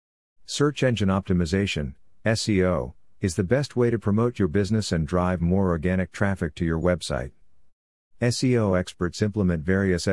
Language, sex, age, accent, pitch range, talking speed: English, male, 50-69, American, 85-105 Hz, 140 wpm